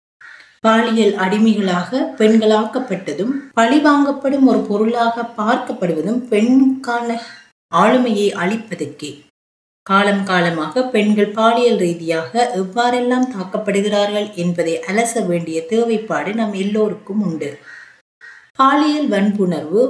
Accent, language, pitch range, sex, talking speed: native, Tamil, 185-240 Hz, female, 80 wpm